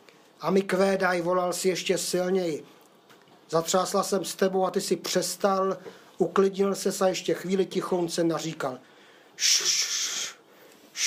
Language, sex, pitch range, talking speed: Czech, male, 175-210 Hz, 135 wpm